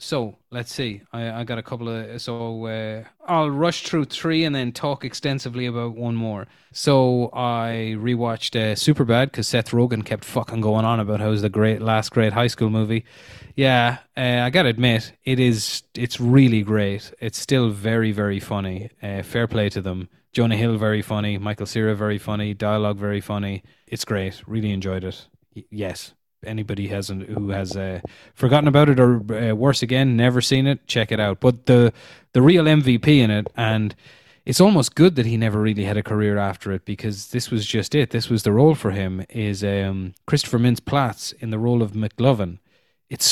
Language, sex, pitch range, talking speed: English, male, 105-130 Hz, 200 wpm